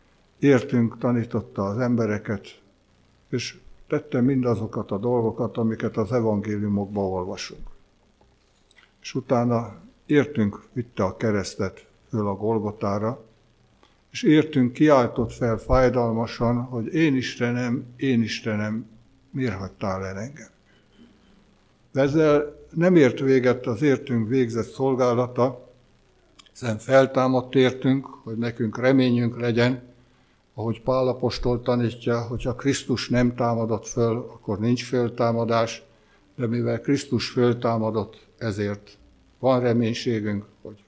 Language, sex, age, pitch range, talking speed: Hungarian, male, 60-79, 110-130 Hz, 105 wpm